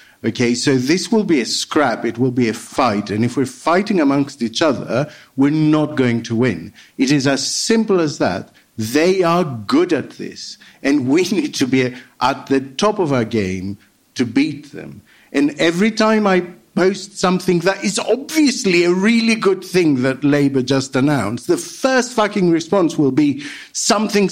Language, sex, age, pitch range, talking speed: English, male, 50-69, 140-210 Hz, 180 wpm